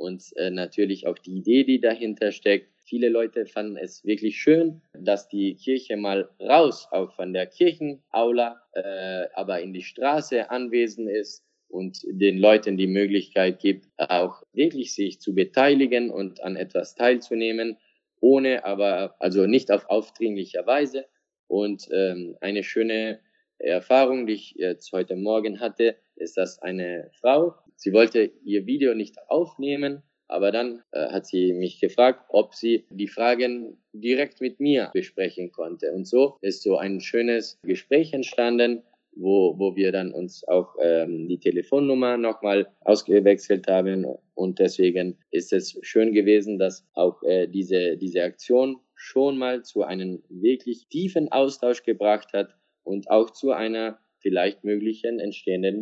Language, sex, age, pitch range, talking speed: German, male, 20-39, 95-125 Hz, 145 wpm